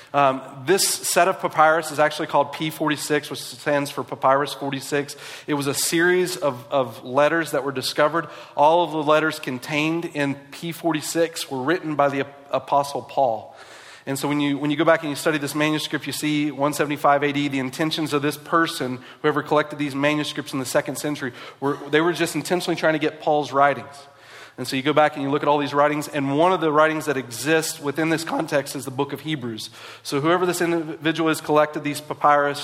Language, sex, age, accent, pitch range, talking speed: English, male, 40-59, American, 140-160 Hz, 215 wpm